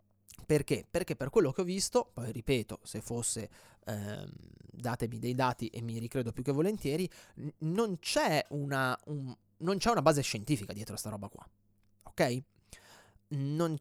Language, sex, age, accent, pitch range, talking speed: Italian, male, 30-49, native, 115-150 Hz, 160 wpm